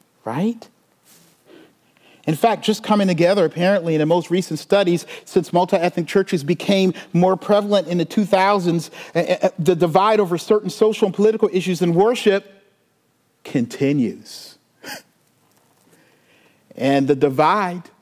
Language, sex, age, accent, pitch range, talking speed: English, male, 40-59, American, 175-285 Hz, 115 wpm